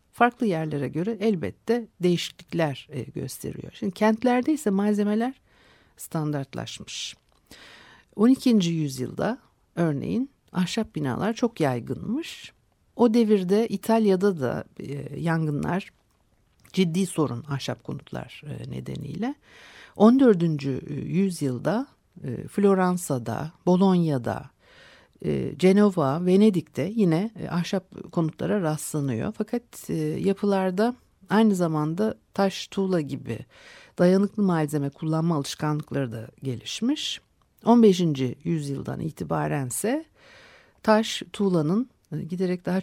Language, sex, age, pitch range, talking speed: Turkish, female, 60-79, 150-215 Hz, 85 wpm